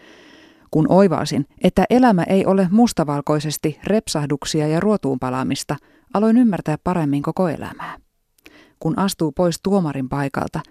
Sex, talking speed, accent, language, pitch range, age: female, 110 wpm, native, Finnish, 145-195 Hz, 30-49